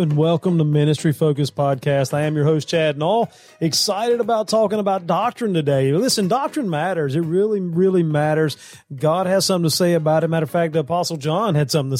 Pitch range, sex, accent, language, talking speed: 135-175 Hz, male, American, English, 200 wpm